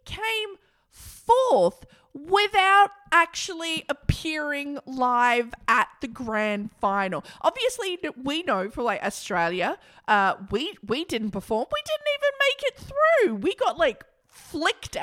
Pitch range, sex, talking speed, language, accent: 190-285 Hz, female, 125 wpm, English, Australian